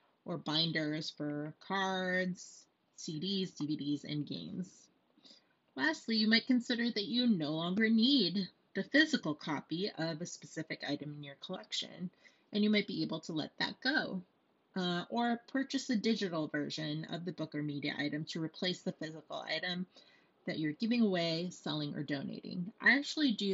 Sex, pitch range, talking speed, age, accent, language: female, 160-215 Hz, 160 wpm, 30-49, American, English